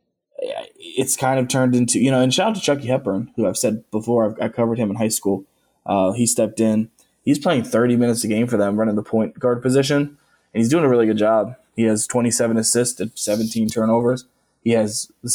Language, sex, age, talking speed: English, male, 20-39, 225 wpm